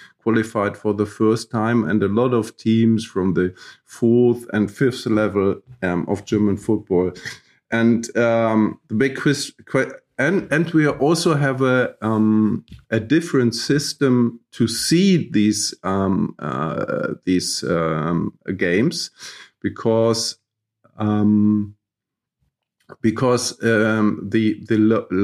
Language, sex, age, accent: English, male, 50-69, German